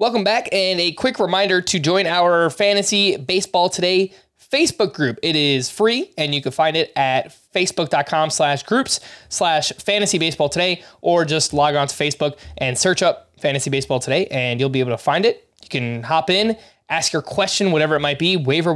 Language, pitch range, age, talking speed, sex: English, 140-195 Hz, 20-39, 190 wpm, male